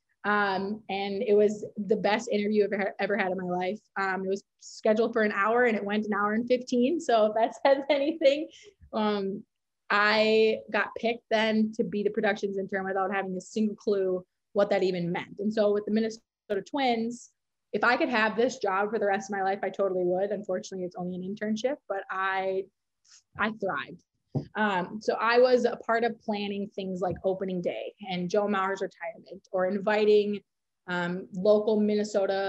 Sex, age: female, 20-39